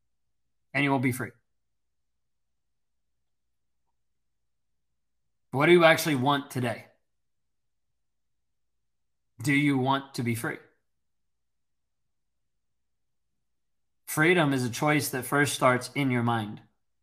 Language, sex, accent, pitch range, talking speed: English, male, American, 130-180 Hz, 95 wpm